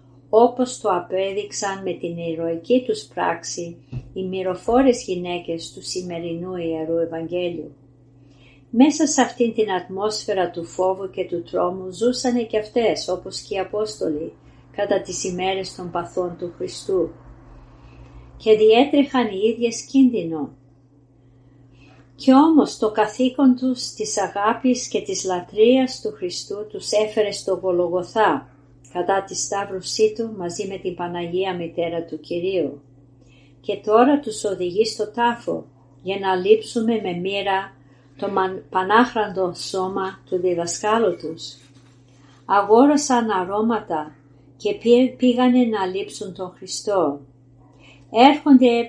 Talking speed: 120 wpm